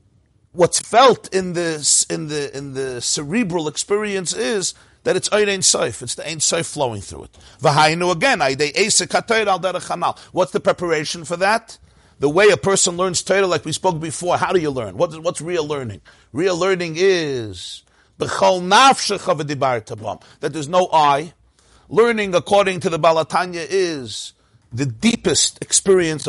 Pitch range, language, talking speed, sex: 140-185 Hz, English, 150 wpm, male